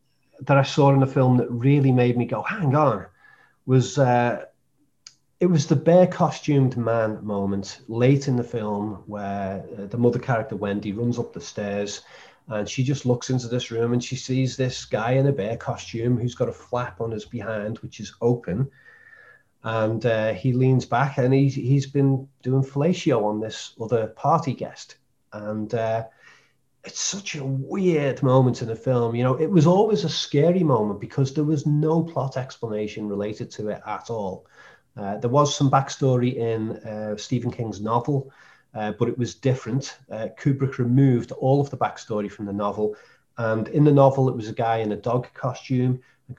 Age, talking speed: 30-49, 190 wpm